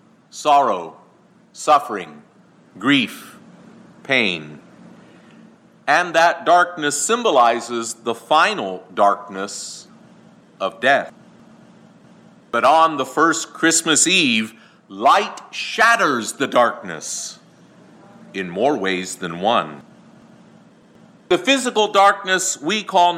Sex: male